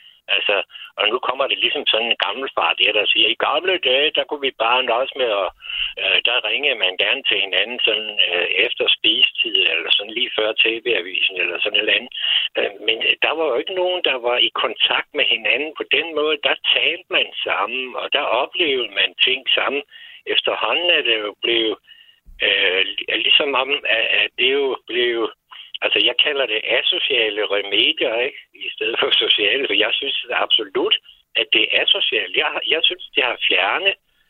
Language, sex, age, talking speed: Danish, male, 60-79, 180 wpm